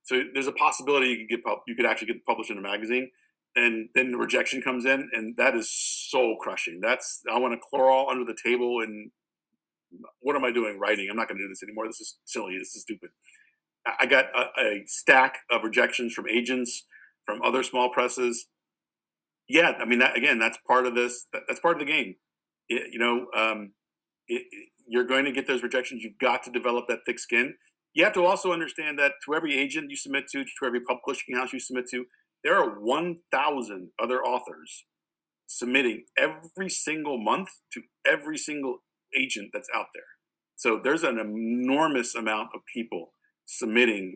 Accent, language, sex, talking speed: American, English, male, 185 wpm